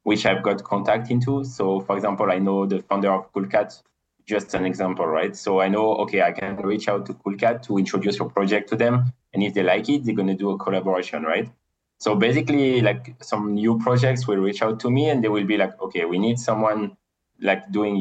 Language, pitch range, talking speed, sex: English, 100-115 Hz, 225 wpm, male